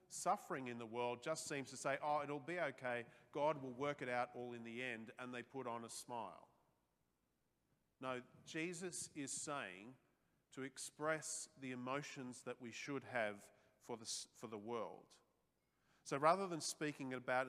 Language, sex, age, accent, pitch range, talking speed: English, male, 40-59, Australian, 125-160 Hz, 170 wpm